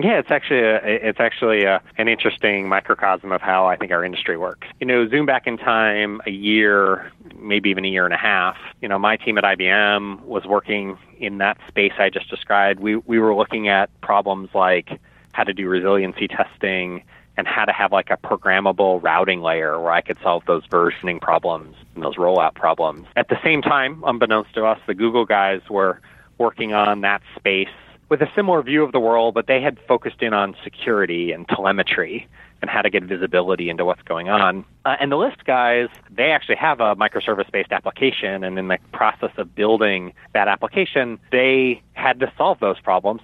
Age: 30-49